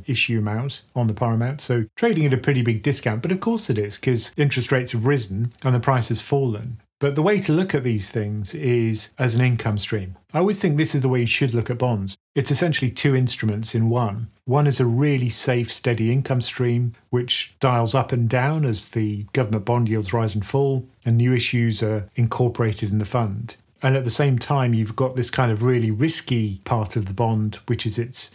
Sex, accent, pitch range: male, British, 110-130 Hz